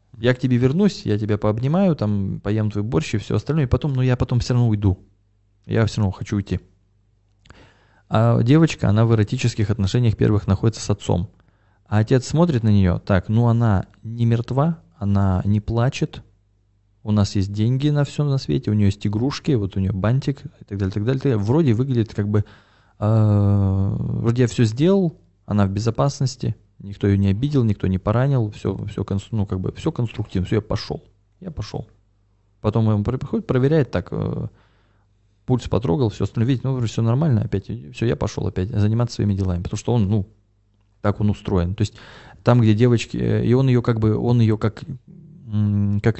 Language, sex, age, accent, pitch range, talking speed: Russian, male, 20-39, native, 100-125 Hz, 190 wpm